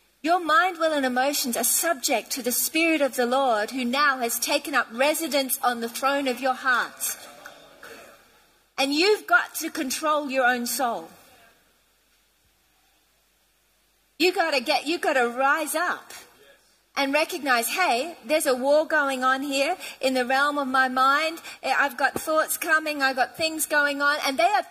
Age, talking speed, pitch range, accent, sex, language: 40-59, 170 wpm, 260-340 Hz, Australian, female, English